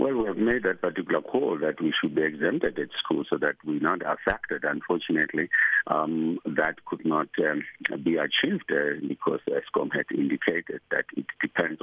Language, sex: English, male